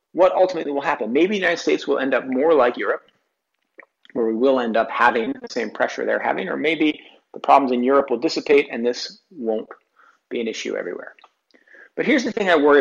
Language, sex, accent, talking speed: English, male, American, 215 wpm